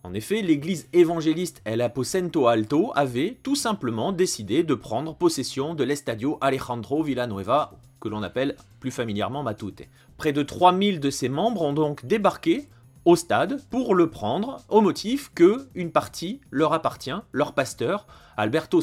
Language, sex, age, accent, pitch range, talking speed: French, male, 30-49, French, 120-180 Hz, 150 wpm